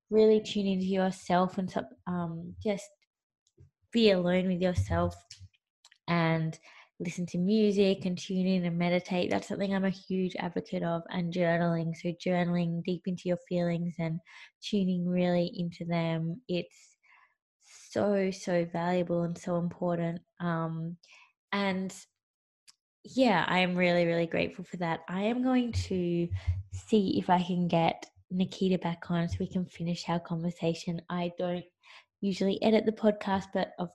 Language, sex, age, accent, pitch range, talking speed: English, female, 20-39, Australian, 170-200 Hz, 145 wpm